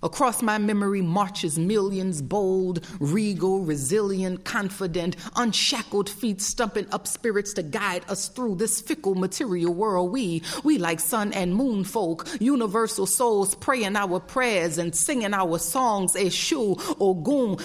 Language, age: English, 30-49